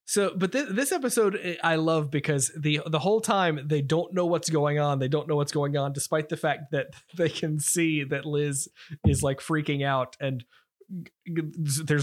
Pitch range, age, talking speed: 140-170 Hz, 20-39, 190 wpm